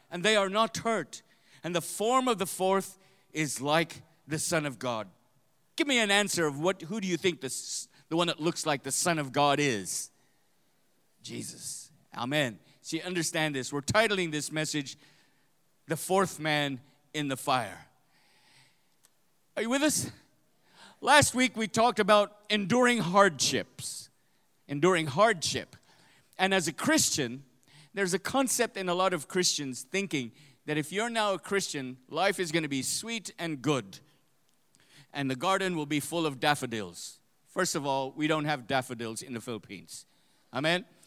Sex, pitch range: male, 145-200 Hz